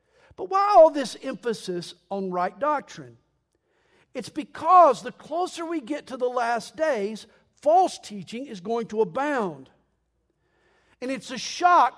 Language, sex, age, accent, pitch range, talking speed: English, male, 50-69, American, 195-275 Hz, 140 wpm